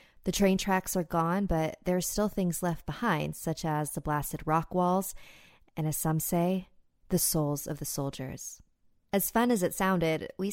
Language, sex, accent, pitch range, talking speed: English, female, American, 150-190 Hz, 190 wpm